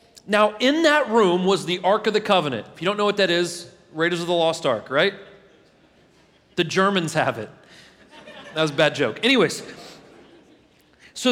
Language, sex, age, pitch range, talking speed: English, male, 30-49, 175-235 Hz, 180 wpm